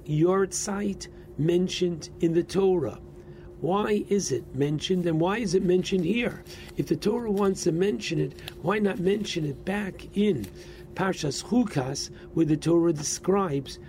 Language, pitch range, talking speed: English, 140-180 Hz, 150 wpm